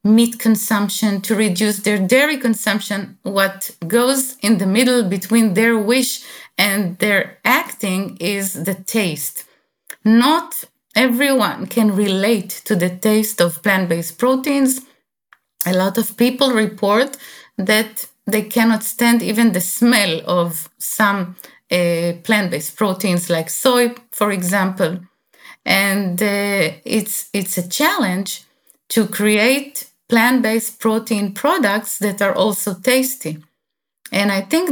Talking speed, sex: 120 wpm, female